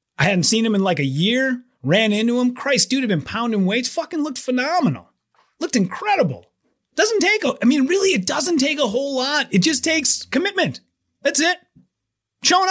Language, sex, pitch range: English, male, 170-255 Hz